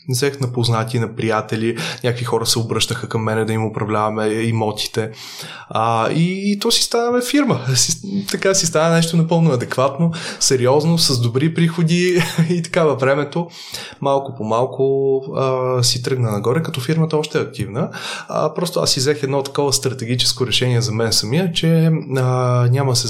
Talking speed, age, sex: 155 wpm, 20-39, male